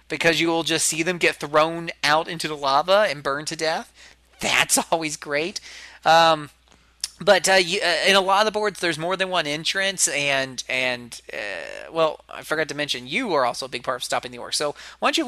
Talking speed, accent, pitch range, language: 220 wpm, American, 125-155 Hz, English